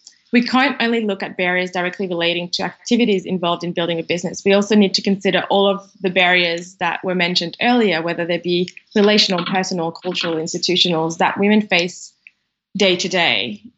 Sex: female